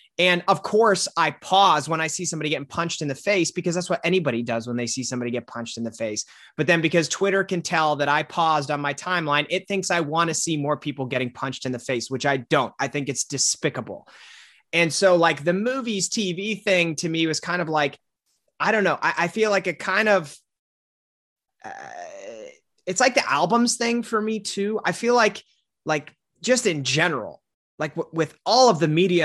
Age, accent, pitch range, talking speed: 30-49, American, 140-195 Hz, 215 wpm